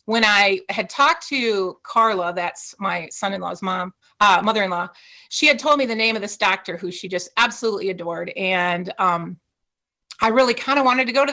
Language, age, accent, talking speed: English, 30-49, American, 190 wpm